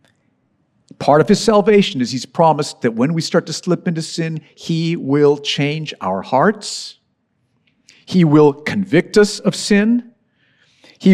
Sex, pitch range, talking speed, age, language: male, 145-200 Hz, 145 wpm, 50-69, English